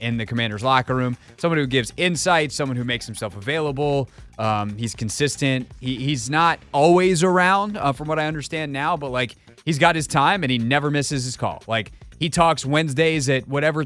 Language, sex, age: English, male, 30-49